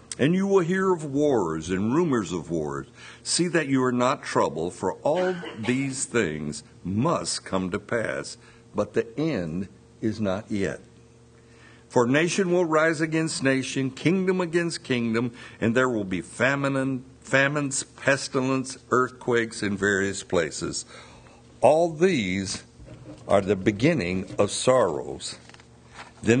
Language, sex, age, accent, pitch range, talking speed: English, male, 60-79, American, 110-160 Hz, 130 wpm